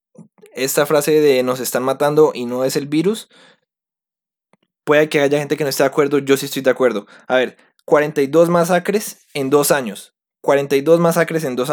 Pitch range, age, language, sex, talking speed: 130-160 Hz, 20-39, Spanish, male, 185 wpm